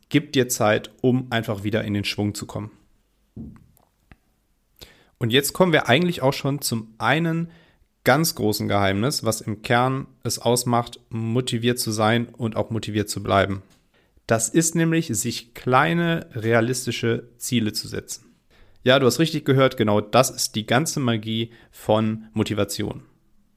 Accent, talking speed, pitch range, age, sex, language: German, 150 wpm, 110-145 Hz, 40-59, male, German